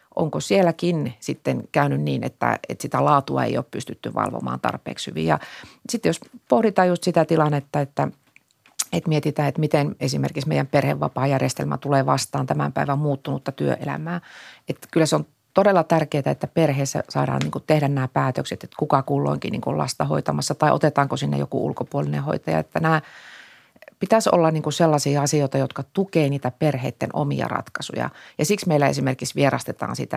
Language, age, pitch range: Finnish, 30-49, 125-165 Hz